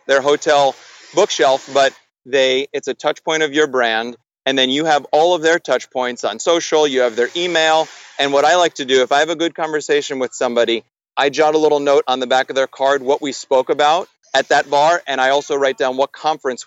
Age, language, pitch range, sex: 30-49, English, 135-160 Hz, male